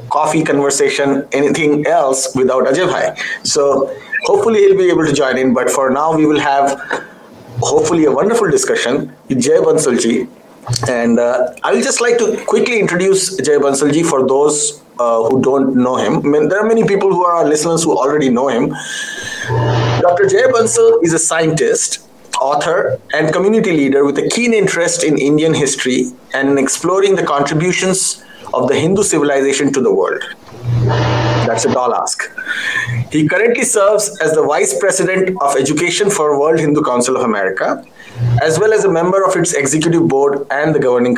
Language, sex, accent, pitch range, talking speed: English, male, Indian, 140-205 Hz, 175 wpm